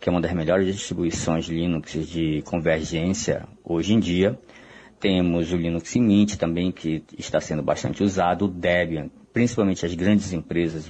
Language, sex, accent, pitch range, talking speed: Portuguese, male, Brazilian, 85-95 Hz, 155 wpm